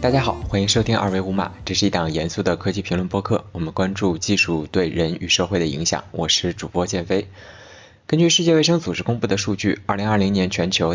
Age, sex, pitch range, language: 20-39, male, 90-110 Hz, Chinese